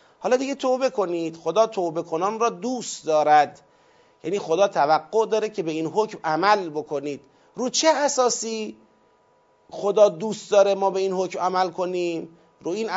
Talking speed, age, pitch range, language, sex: 155 wpm, 40-59, 165-220 Hz, Persian, male